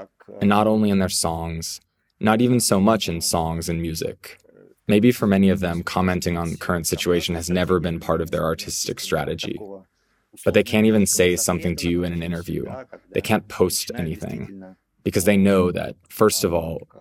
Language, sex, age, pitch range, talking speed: English, male, 20-39, 85-100 Hz, 190 wpm